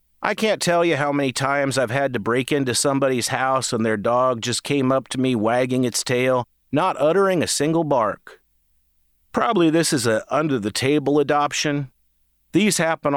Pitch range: 120-150 Hz